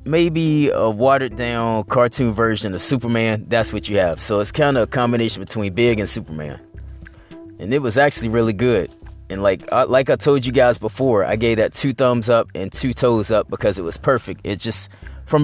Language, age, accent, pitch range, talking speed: English, 20-39, American, 105-135 Hz, 200 wpm